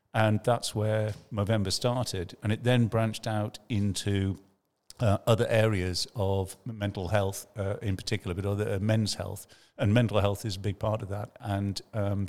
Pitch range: 100-115 Hz